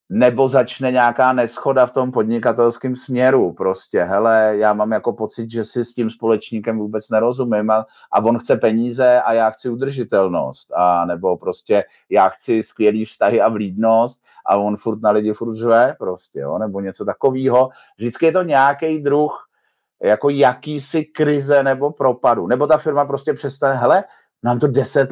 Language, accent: Czech, native